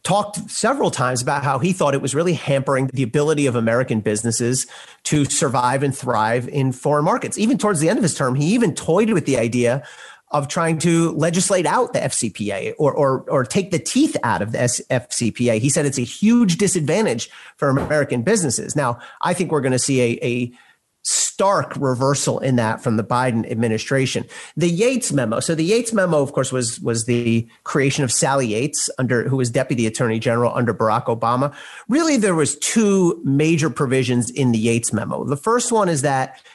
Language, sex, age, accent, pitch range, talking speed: English, male, 40-59, American, 125-175 Hz, 195 wpm